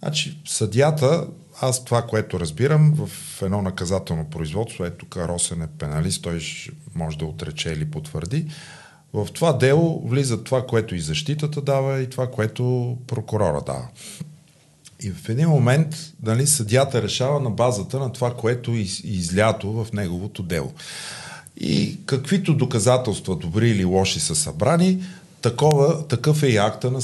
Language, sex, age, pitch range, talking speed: Bulgarian, male, 50-69, 100-145 Hz, 140 wpm